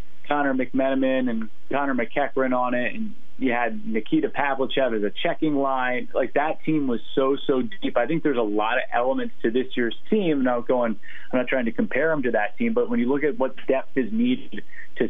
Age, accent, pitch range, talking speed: 30-49, American, 115-135 Hz, 220 wpm